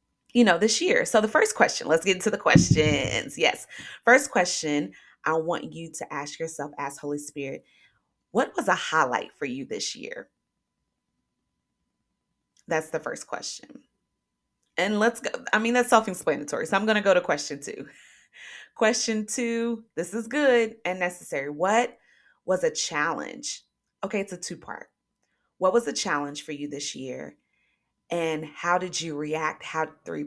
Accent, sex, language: American, female, English